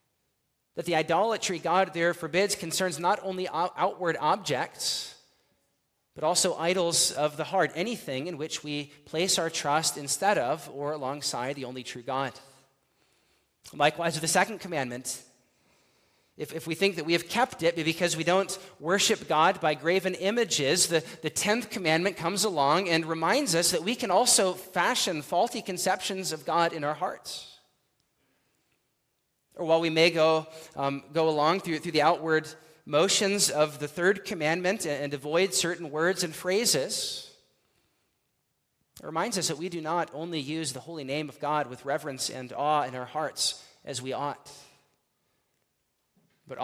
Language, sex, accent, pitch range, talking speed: English, male, American, 145-180 Hz, 160 wpm